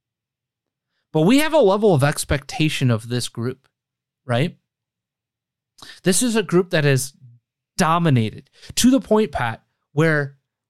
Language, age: English, 20-39